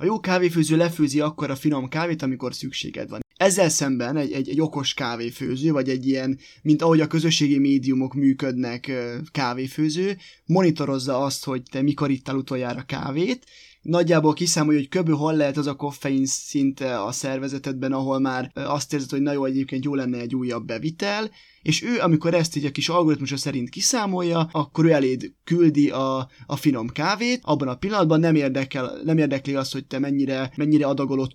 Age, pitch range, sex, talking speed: 20-39, 130-155 Hz, male, 170 wpm